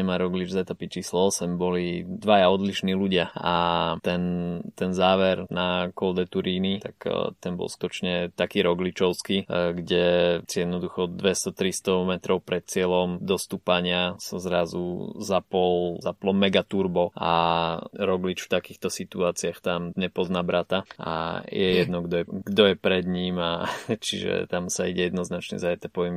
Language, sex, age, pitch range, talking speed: Slovak, male, 20-39, 90-100 Hz, 140 wpm